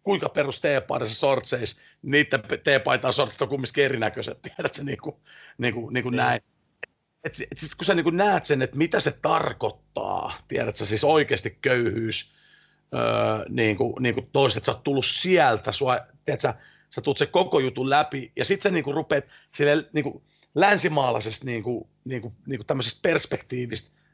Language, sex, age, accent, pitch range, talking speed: Finnish, male, 40-59, native, 125-170 Hz, 130 wpm